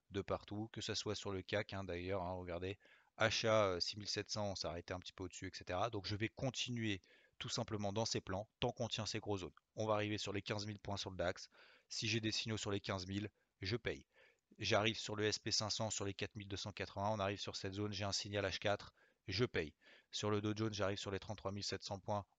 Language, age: French, 30-49